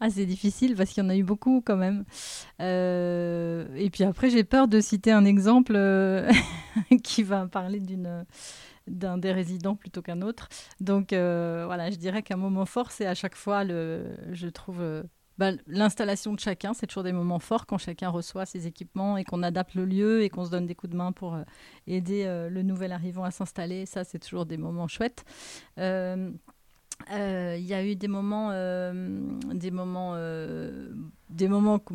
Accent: French